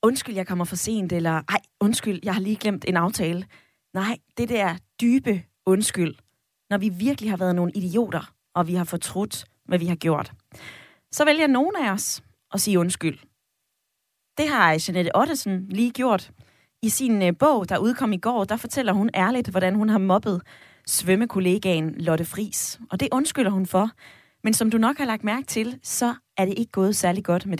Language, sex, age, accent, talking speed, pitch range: Danish, female, 20-39, native, 190 wpm, 180-225 Hz